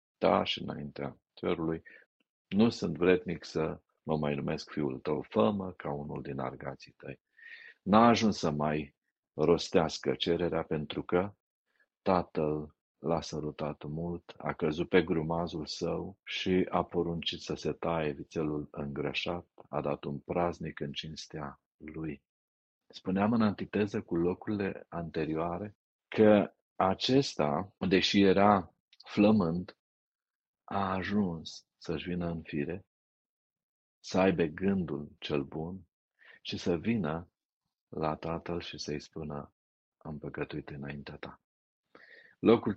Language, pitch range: Romanian, 75-100 Hz